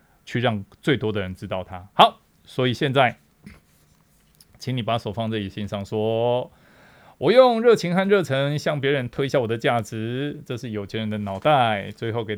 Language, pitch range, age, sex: Chinese, 105-125 Hz, 20-39, male